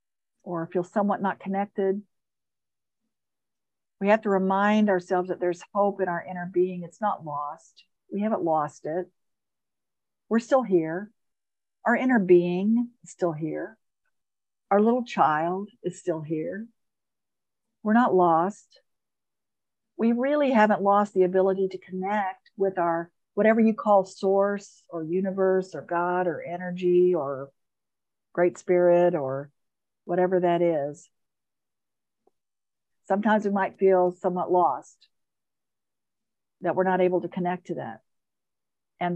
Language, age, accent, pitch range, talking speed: English, 50-69, American, 175-205 Hz, 130 wpm